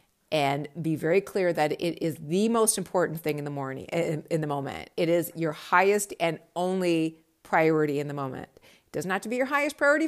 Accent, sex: American, female